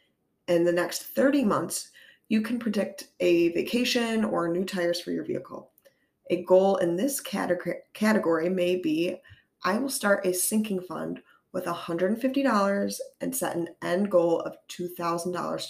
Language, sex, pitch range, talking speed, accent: English, female, 175-210 Hz, 145 wpm, American